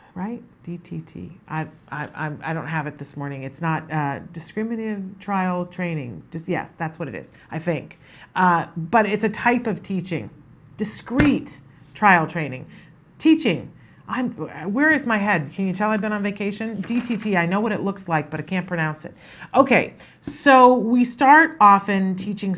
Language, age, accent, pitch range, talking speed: English, 40-59, American, 160-200 Hz, 170 wpm